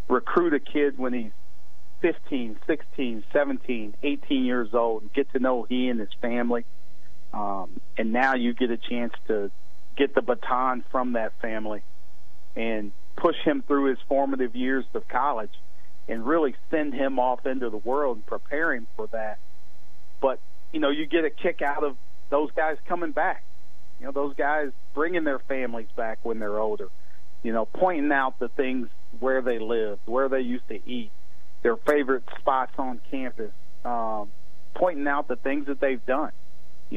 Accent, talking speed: American, 175 wpm